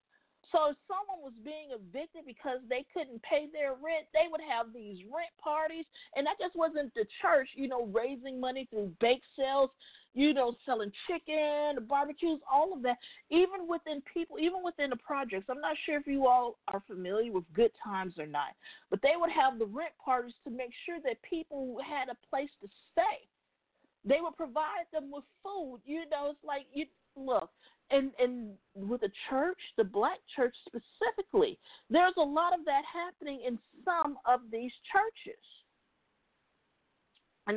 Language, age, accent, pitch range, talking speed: English, 50-69, American, 250-330 Hz, 175 wpm